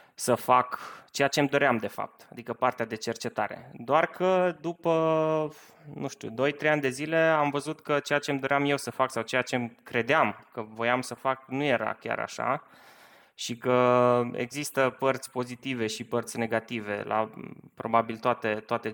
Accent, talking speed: native, 170 wpm